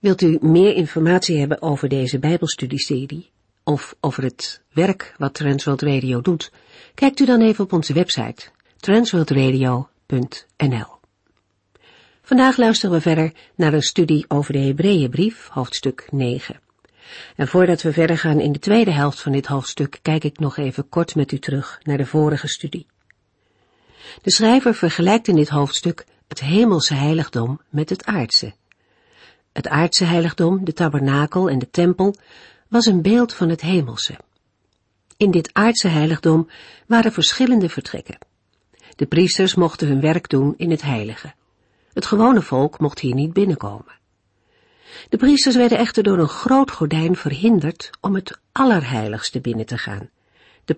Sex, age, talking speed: female, 50-69, 150 wpm